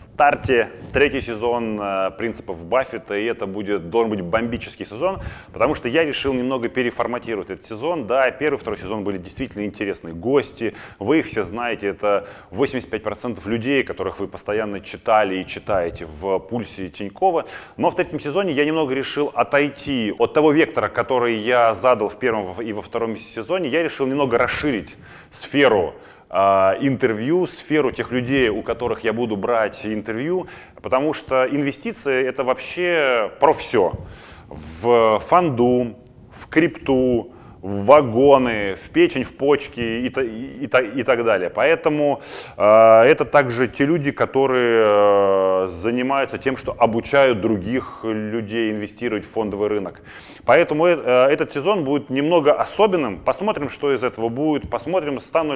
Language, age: Russian, 20-39